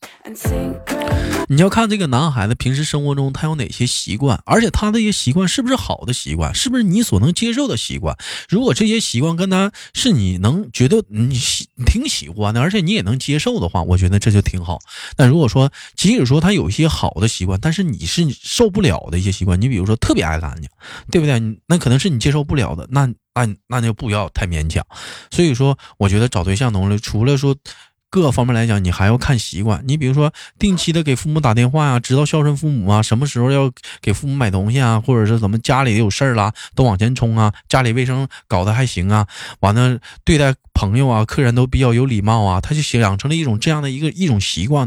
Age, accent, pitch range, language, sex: 20-39, native, 105-150 Hz, Chinese, male